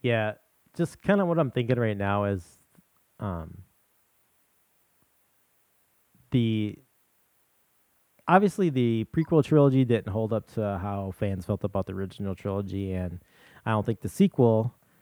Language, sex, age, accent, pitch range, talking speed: English, male, 30-49, American, 95-120 Hz, 130 wpm